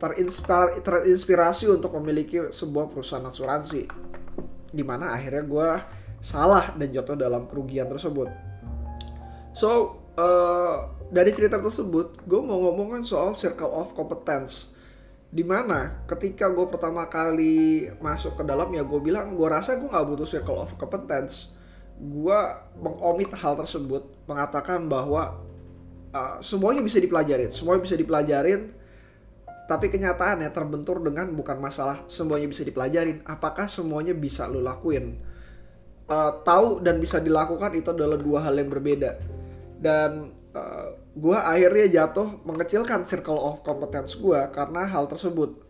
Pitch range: 140-180 Hz